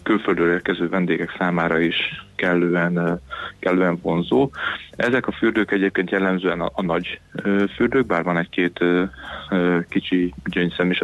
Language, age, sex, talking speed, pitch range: Hungarian, 30-49, male, 125 wpm, 90-95 Hz